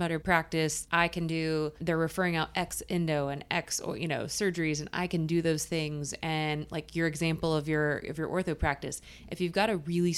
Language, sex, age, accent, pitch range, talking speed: English, female, 20-39, American, 150-170 Hz, 210 wpm